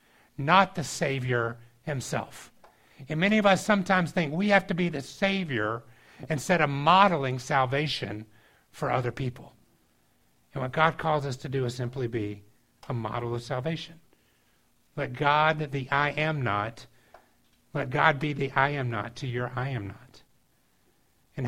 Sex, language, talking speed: male, English, 155 wpm